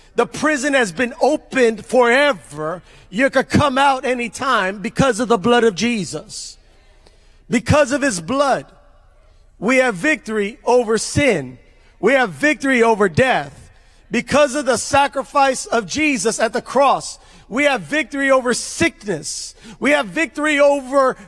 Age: 40-59